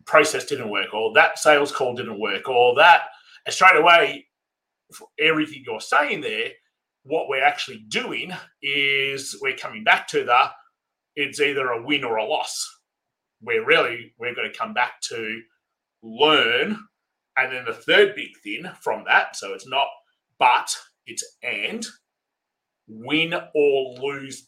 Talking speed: 150 wpm